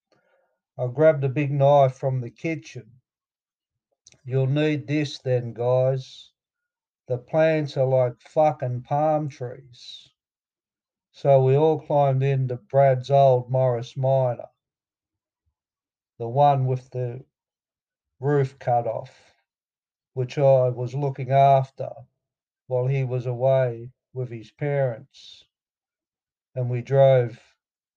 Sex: male